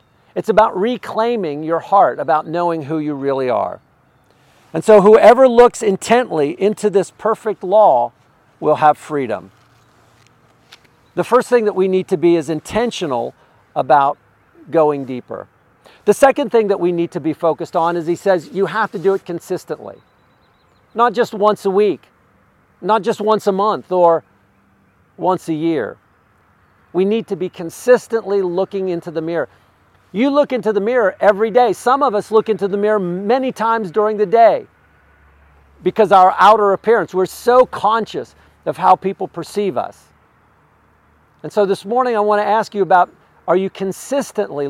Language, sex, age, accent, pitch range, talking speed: English, male, 50-69, American, 155-215 Hz, 165 wpm